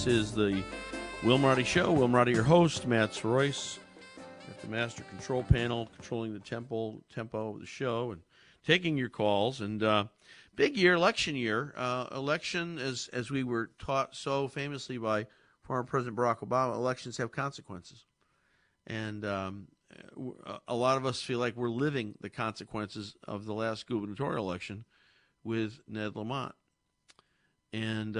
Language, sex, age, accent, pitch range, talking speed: English, male, 50-69, American, 105-130 Hz, 150 wpm